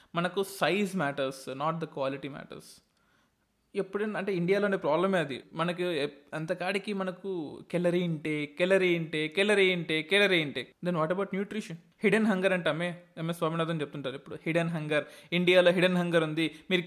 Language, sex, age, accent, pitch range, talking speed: Telugu, male, 20-39, native, 160-200 Hz, 145 wpm